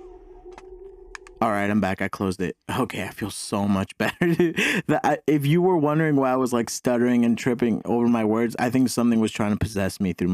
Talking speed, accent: 210 wpm, American